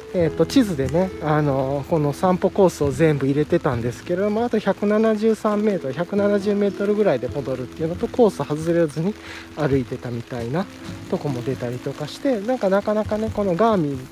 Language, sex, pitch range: Japanese, male, 135-210 Hz